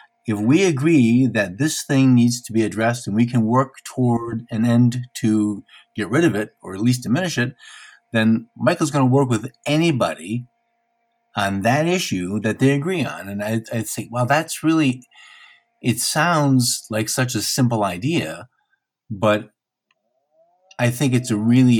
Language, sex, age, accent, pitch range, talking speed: English, male, 50-69, American, 110-140 Hz, 170 wpm